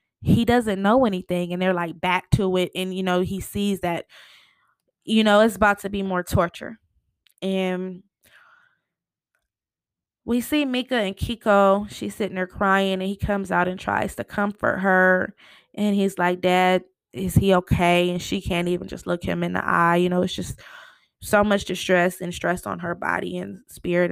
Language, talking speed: English, 185 wpm